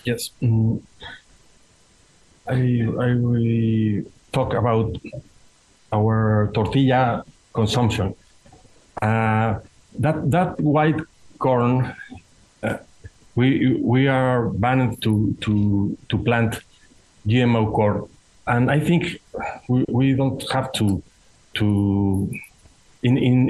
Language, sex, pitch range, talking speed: English, male, 110-130 Hz, 95 wpm